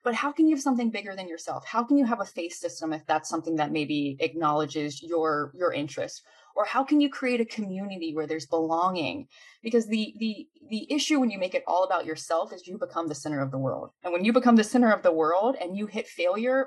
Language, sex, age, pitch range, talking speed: English, female, 20-39, 180-265 Hz, 245 wpm